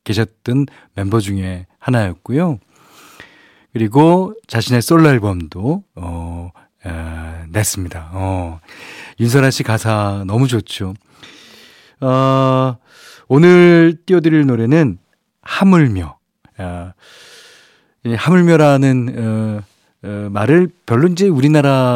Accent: native